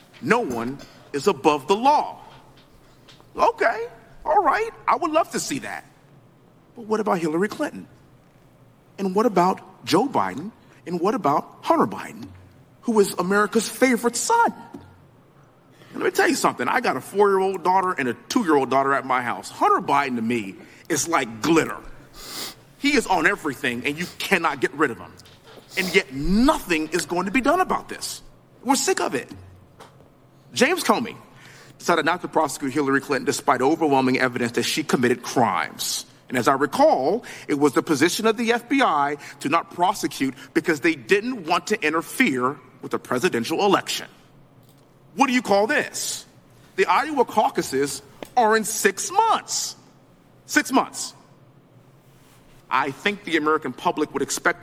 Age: 40-59